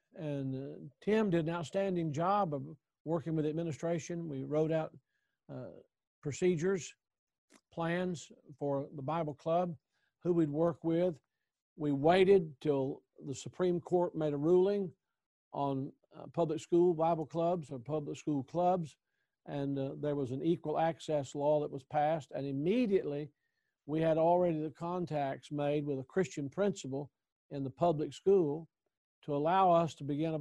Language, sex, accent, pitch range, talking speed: English, male, American, 145-175 Hz, 150 wpm